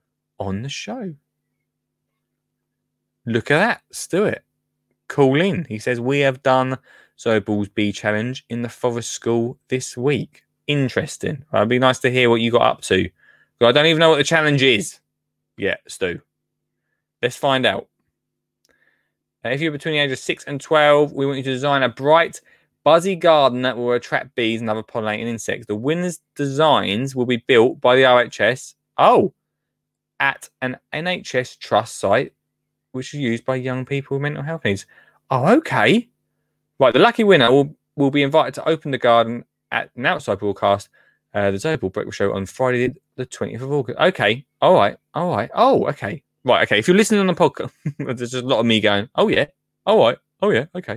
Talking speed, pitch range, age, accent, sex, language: 185 wpm, 110-145 Hz, 20-39, British, male, English